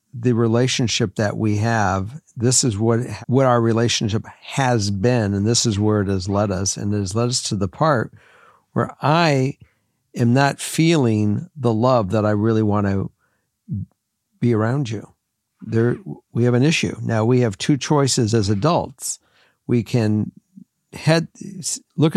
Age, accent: 60-79, American